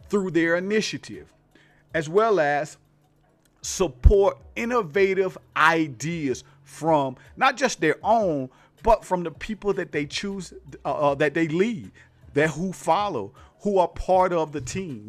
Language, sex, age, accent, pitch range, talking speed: English, male, 40-59, American, 145-195 Hz, 140 wpm